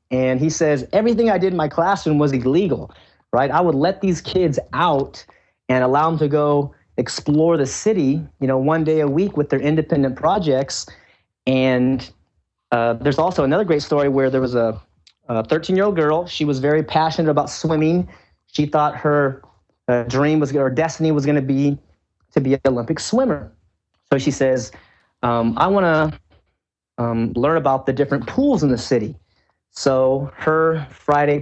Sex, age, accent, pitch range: male, 30-49, American, 130-160 Hz